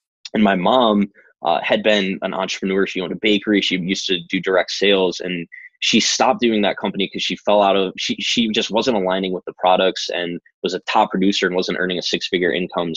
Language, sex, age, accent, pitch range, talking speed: English, male, 20-39, American, 95-110 Hz, 225 wpm